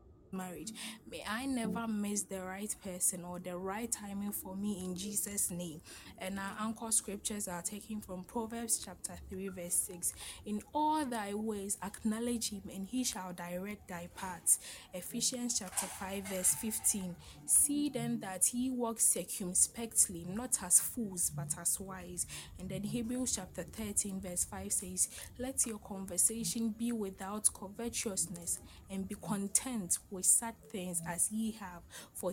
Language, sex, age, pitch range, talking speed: English, female, 10-29, 185-230 Hz, 150 wpm